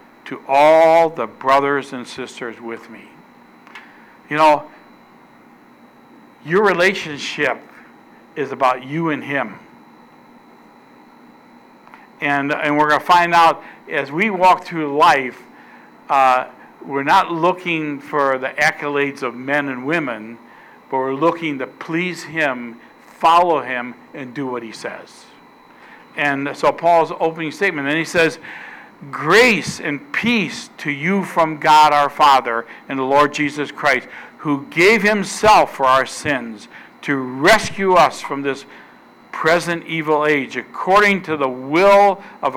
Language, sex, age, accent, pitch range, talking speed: English, male, 60-79, American, 135-170 Hz, 130 wpm